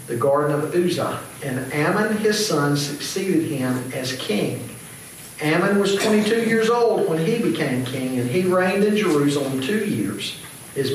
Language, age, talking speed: English, 50-69, 160 wpm